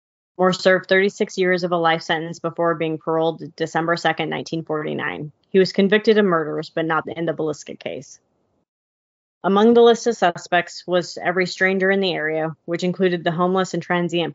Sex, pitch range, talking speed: female, 165-185 Hz, 175 wpm